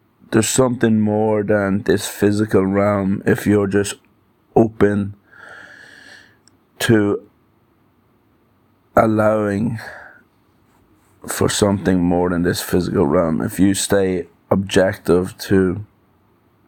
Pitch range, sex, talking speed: 90-105 Hz, male, 90 wpm